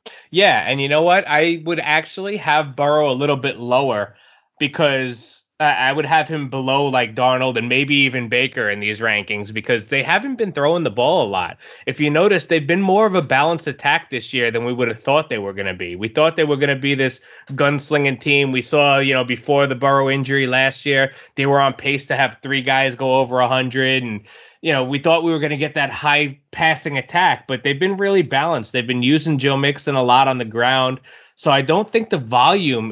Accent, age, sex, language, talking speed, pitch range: American, 20-39, male, English, 230 wpm, 130-155 Hz